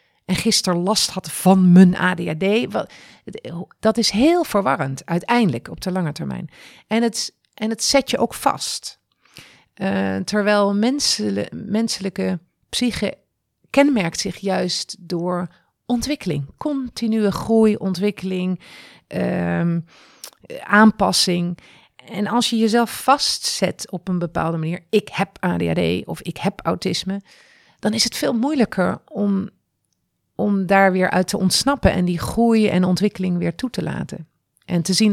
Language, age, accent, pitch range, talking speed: Dutch, 40-59, Dutch, 170-220 Hz, 130 wpm